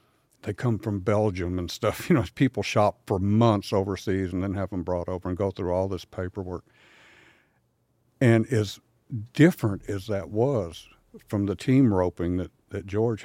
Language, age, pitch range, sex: English, 60-79, 95-115 Hz, male